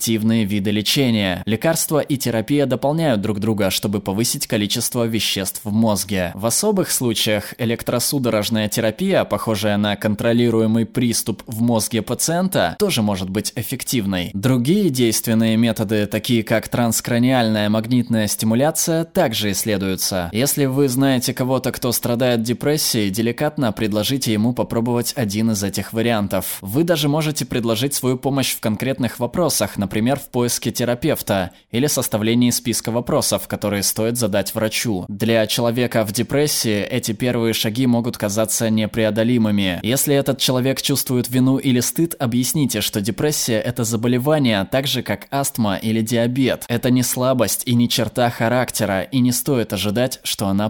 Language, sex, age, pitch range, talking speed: Russian, male, 20-39, 105-130 Hz, 140 wpm